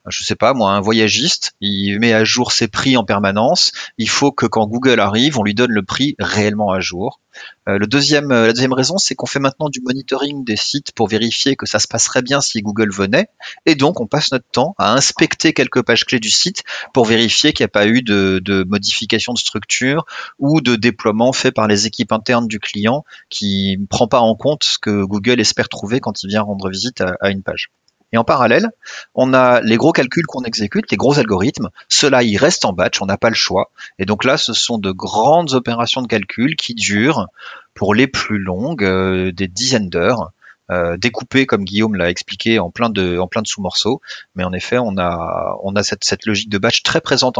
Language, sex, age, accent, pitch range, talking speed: French, male, 30-49, French, 100-130 Hz, 225 wpm